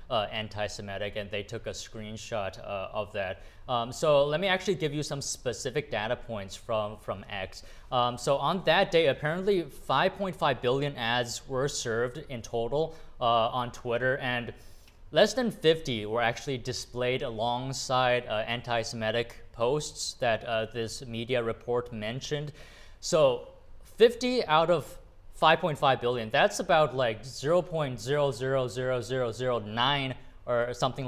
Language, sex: English, male